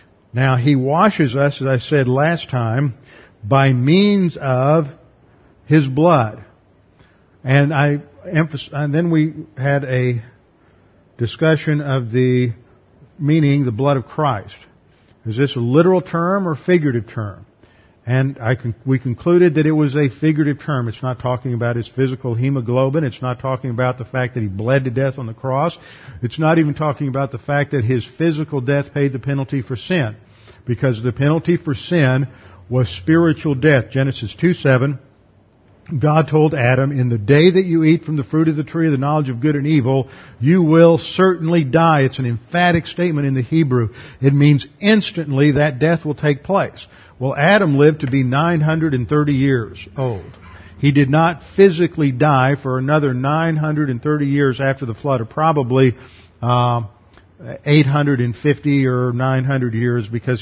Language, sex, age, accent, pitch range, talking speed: English, male, 50-69, American, 125-155 Hz, 160 wpm